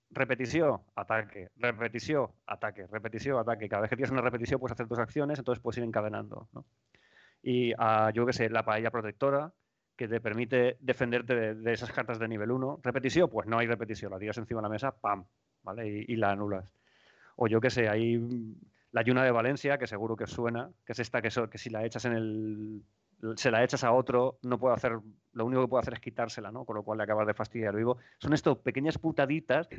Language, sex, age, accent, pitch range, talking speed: Spanish, male, 30-49, Spanish, 110-130 Hz, 220 wpm